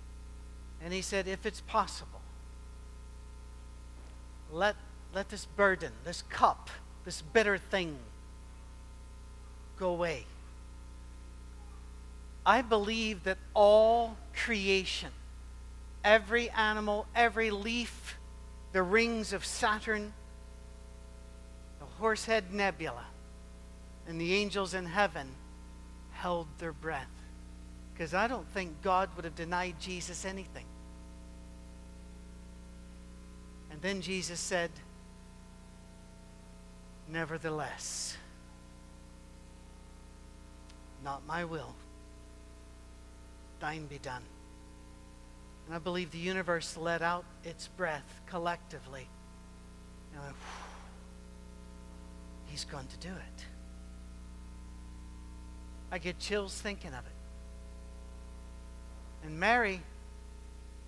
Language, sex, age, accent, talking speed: English, male, 50-69, American, 85 wpm